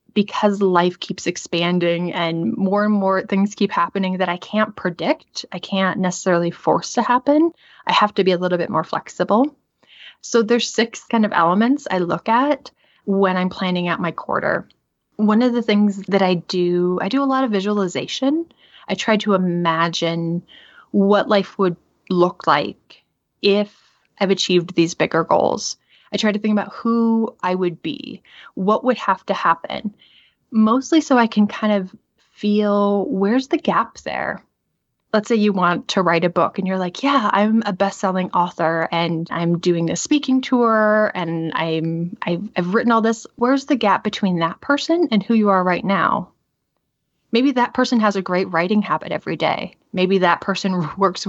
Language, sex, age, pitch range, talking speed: English, female, 20-39, 180-220 Hz, 180 wpm